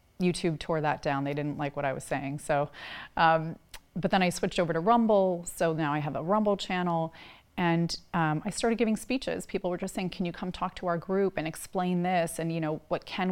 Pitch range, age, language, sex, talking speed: 165-195 Hz, 30-49, English, female, 235 wpm